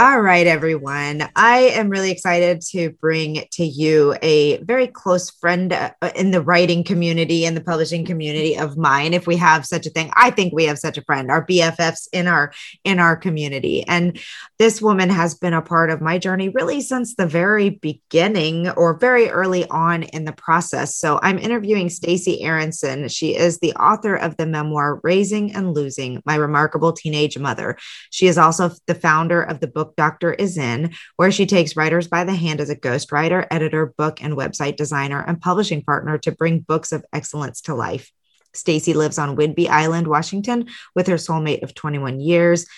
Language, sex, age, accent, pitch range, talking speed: English, female, 20-39, American, 155-185 Hz, 185 wpm